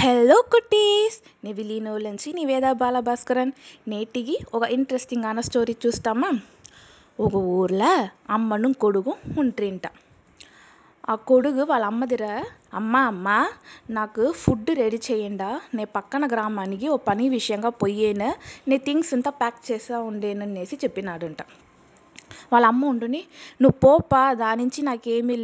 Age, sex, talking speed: 20-39, female, 115 wpm